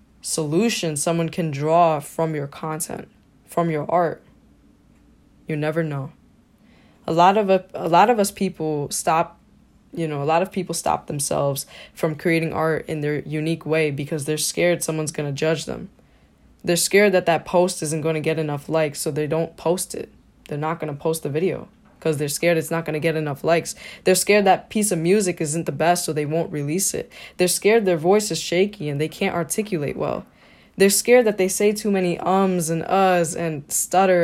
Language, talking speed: English, 200 wpm